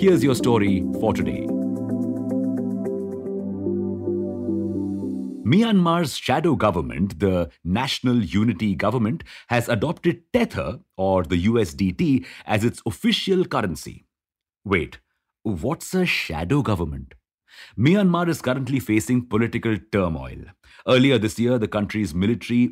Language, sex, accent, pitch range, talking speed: English, male, Indian, 95-135 Hz, 105 wpm